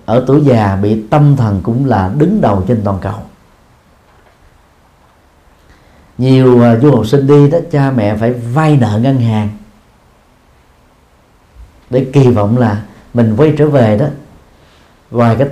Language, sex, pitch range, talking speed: Vietnamese, male, 100-135 Hz, 145 wpm